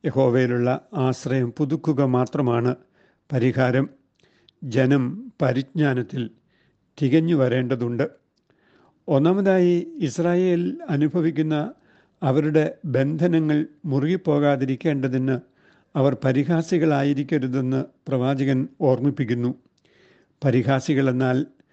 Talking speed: 55 wpm